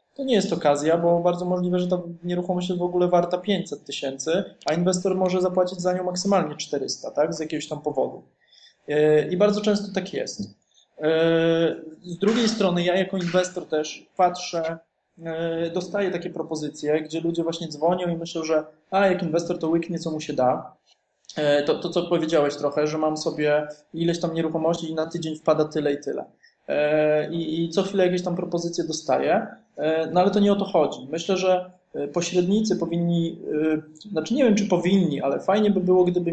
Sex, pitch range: male, 155-185 Hz